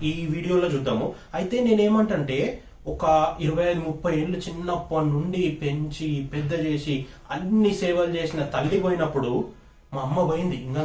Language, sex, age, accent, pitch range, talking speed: Telugu, male, 30-49, native, 150-190 Hz, 135 wpm